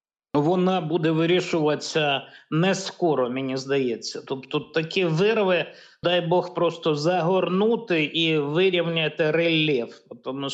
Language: Ukrainian